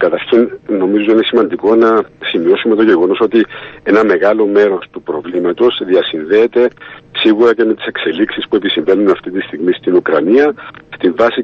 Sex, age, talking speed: male, 50-69, 150 wpm